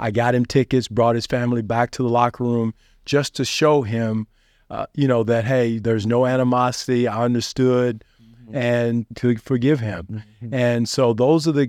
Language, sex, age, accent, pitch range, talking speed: English, male, 40-59, American, 115-125 Hz, 180 wpm